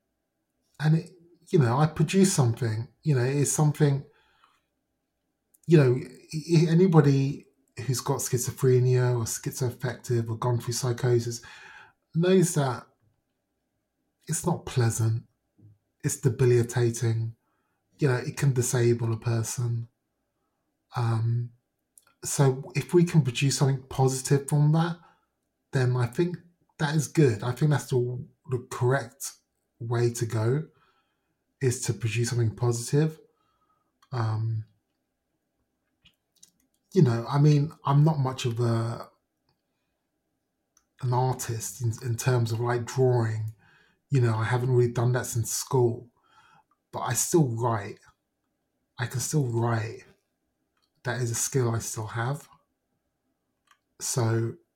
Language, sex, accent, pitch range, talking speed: English, male, British, 120-145 Hz, 120 wpm